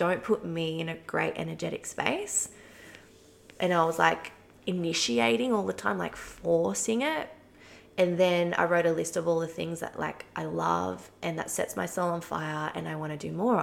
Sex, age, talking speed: female, 20-39, 205 wpm